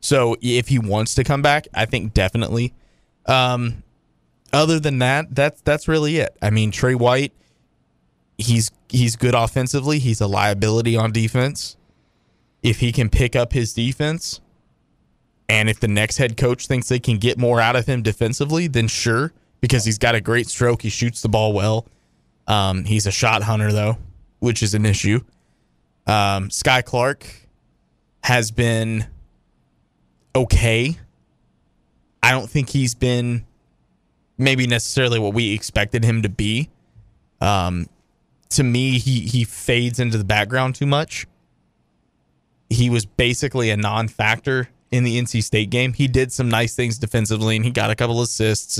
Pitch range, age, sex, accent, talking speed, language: 105-125 Hz, 20-39, male, American, 155 wpm, English